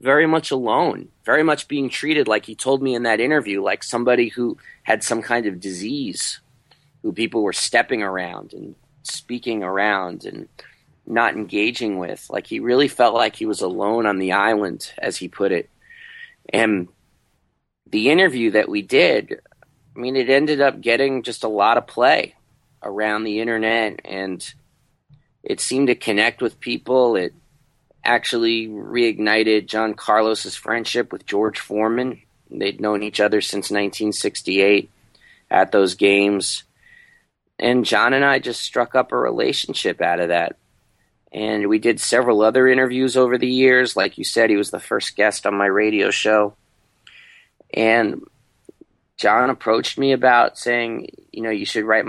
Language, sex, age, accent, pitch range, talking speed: English, male, 30-49, American, 105-130 Hz, 160 wpm